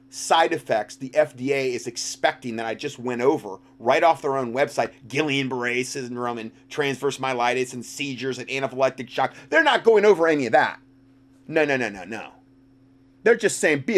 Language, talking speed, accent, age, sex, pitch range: English, 185 wpm, American, 30-49, male, 125-155 Hz